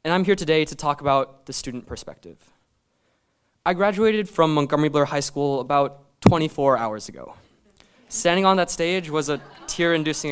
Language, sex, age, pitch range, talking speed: English, male, 20-39, 140-180 Hz, 165 wpm